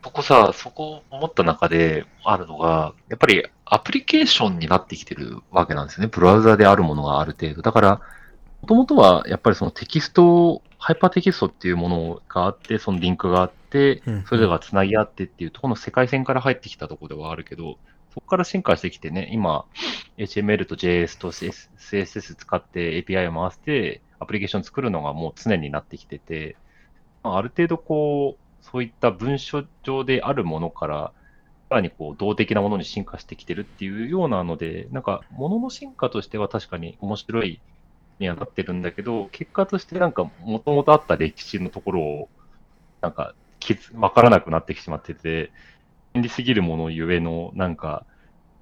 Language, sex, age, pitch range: Japanese, male, 30-49, 85-135 Hz